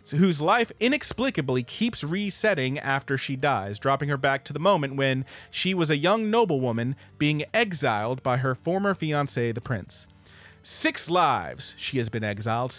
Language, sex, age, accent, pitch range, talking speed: English, male, 40-59, American, 115-170 Hz, 160 wpm